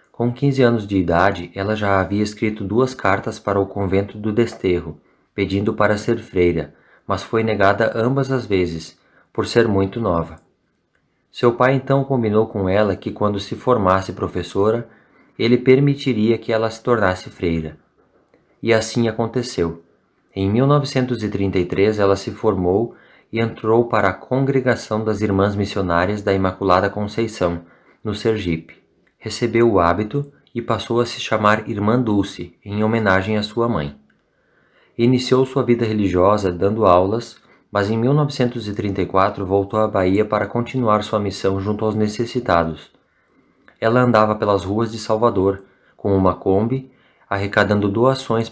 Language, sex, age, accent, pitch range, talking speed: Portuguese, male, 20-39, Brazilian, 95-120 Hz, 140 wpm